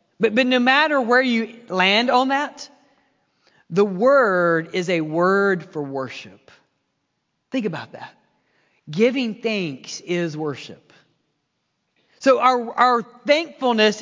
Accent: American